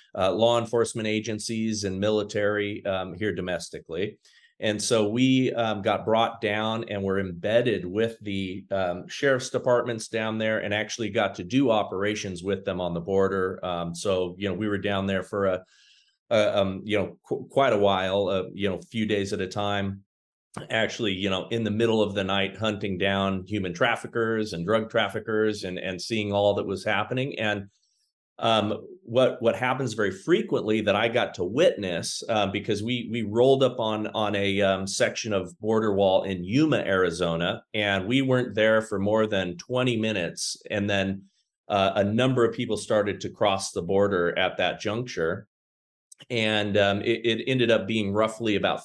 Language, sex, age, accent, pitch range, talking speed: English, male, 40-59, American, 95-110 Hz, 185 wpm